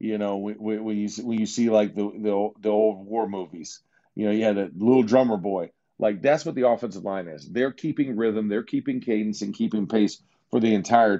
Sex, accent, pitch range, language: male, American, 95-115 Hz, English